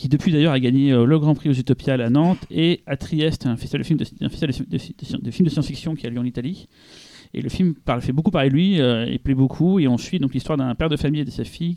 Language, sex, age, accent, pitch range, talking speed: French, male, 30-49, French, 130-160 Hz, 250 wpm